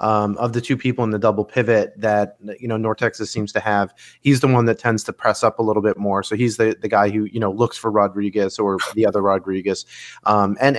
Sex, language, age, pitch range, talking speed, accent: male, English, 30-49, 105-130 Hz, 255 wpm, American